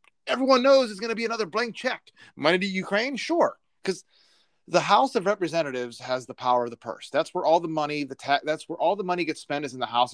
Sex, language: male, English